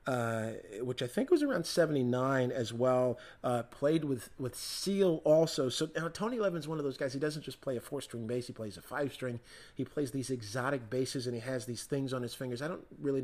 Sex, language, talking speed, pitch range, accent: male, English, 230 wpm, 120-140 Hz, American